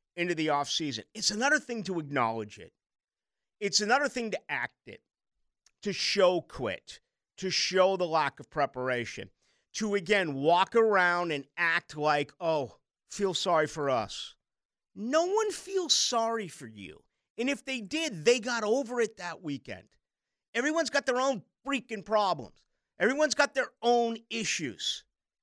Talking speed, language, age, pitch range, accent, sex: 150 wpm, English, 50-69, 145-240 Hz, American, male